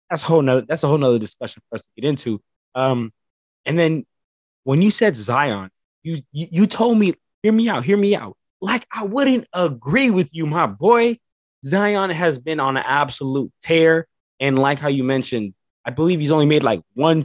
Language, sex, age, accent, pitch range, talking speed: English, male, 20-39, American, 120-155 Hz, 205 wpm